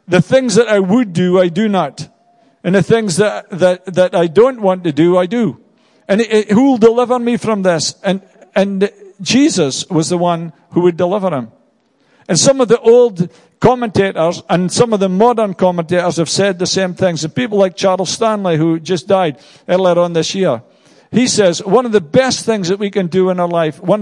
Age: 50-69